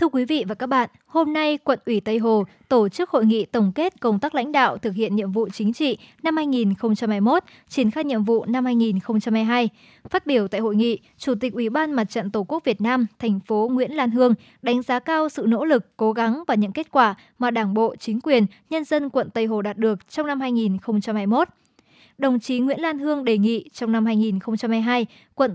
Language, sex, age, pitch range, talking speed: Vietnamese, male, 20-39, 220-270 Hz, 220 wpm